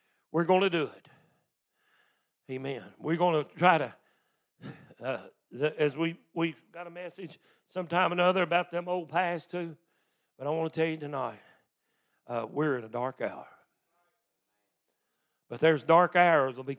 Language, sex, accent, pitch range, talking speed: English, male, American, 140-180 Hz, 165 wpm